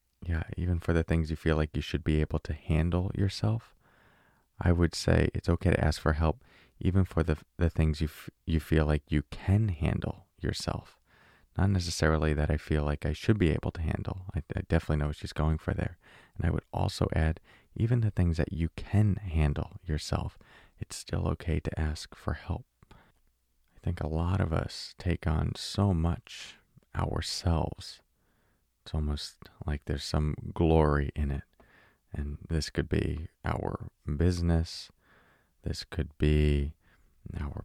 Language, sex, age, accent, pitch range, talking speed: English, male, 30-49, American, 80-100 Hz, 170 wpm